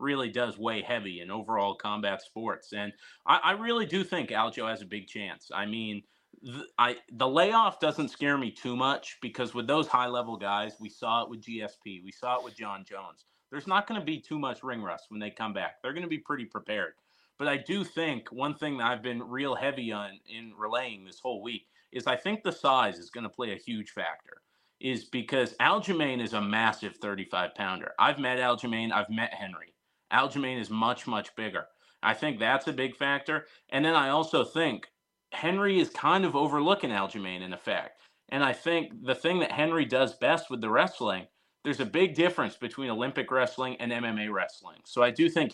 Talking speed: 210 wpm